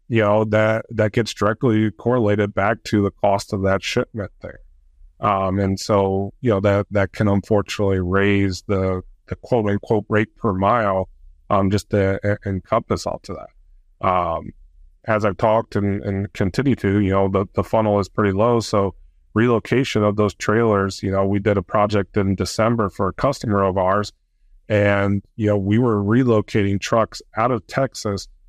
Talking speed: 175 wpm